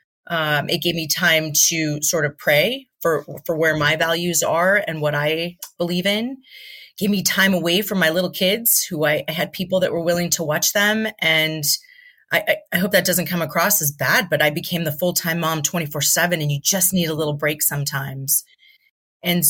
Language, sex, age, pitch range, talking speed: English, female, 30-49, 155-195 Hz, 205 wpm